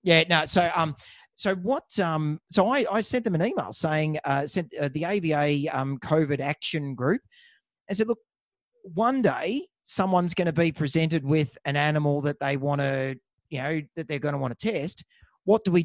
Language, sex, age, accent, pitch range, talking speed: English, male, 30-49, Australian, 150-195 Hz, 200 wpm